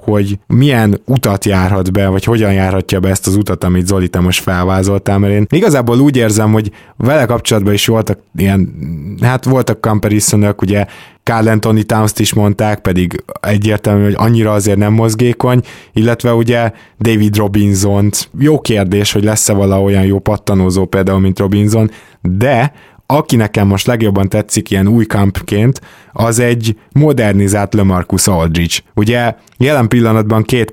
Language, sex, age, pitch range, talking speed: Hungarian, male, 20-39, 95-115 Hz, 150 wpm